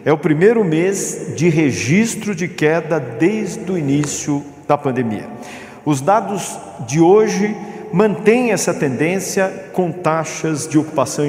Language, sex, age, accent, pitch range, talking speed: Portuguese, male, 50-69, Brazilian, 150-205 Hz, 130 wpm